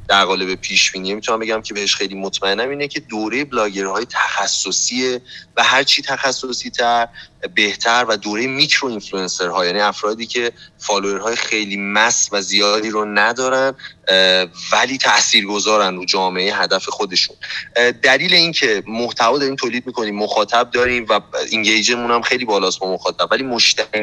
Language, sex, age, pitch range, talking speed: Persian, male, 30-49, 105-140 Hz, 155 wpm